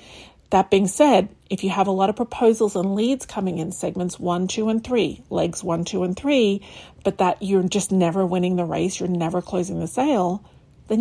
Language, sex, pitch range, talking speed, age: English, female, 180-205 Hz, 205 wpm, 40-59